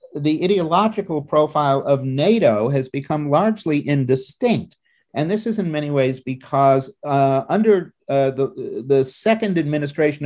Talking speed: 135 wpm